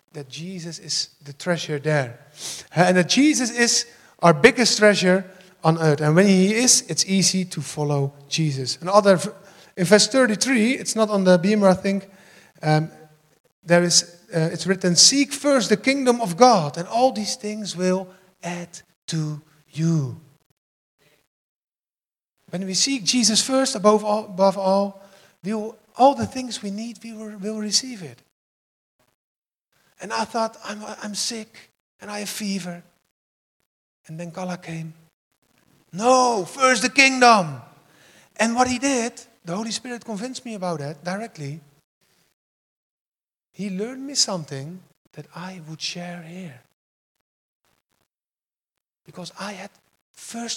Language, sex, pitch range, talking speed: English, male, 160-220 Hz, 140 wpm